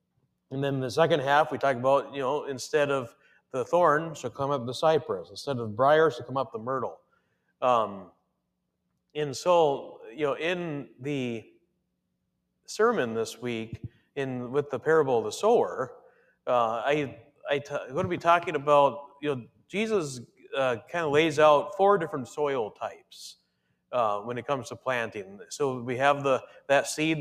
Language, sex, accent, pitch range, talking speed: English, male, American, 125-145 Hz, 175 wpm